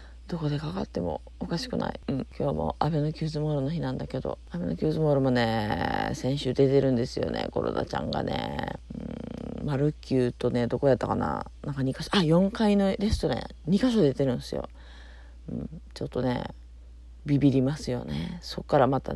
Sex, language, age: female, Japanese, 40-59